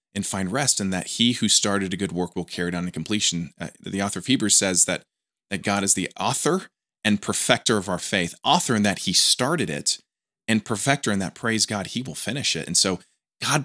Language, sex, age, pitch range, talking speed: English, male, 20-39, 100-125 Hz, 235 wpm